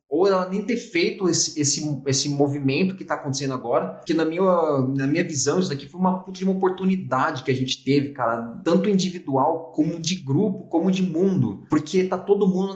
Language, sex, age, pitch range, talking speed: Portuguese, male, 20-39, 140-180 Hz, 200 wpm